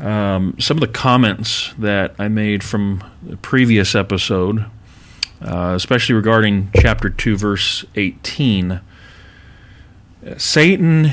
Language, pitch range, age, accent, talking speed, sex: English, 95-120 Hz, 40-59, American, 110 wpm, male